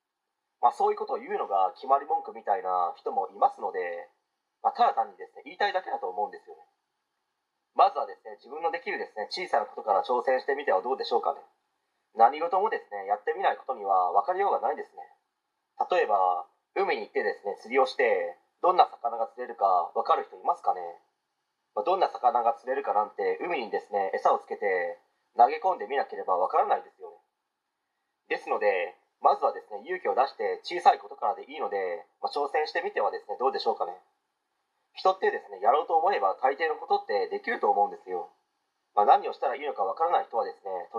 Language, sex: Japanese, male